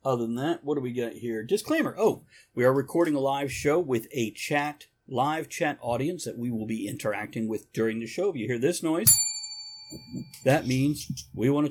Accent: American